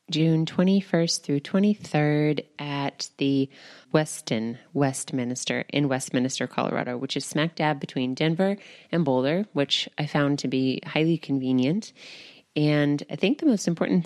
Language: English